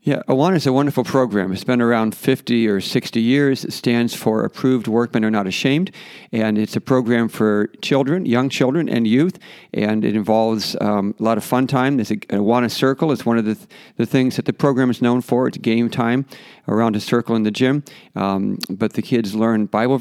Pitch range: 110-130 Hz